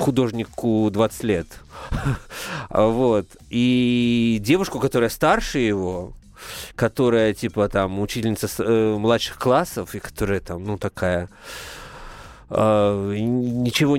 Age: 30-49